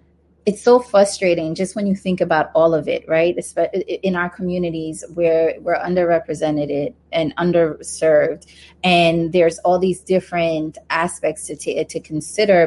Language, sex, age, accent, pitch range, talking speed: English, female, 30-49, American, 160-185 Hz, 140 wpm